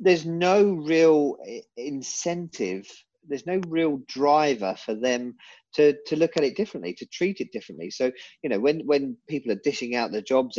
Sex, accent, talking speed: male, British, 175 wpm